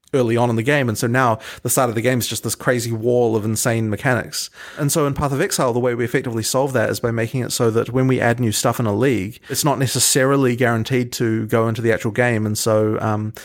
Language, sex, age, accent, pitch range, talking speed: English, male, 30-49, Australian, 115-135 Hz, 270 wpm